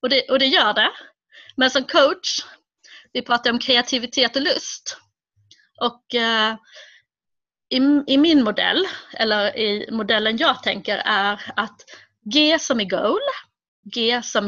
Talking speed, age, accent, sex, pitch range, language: 135 wpm, 30-49, native, female, 210-275 Hz, Swedish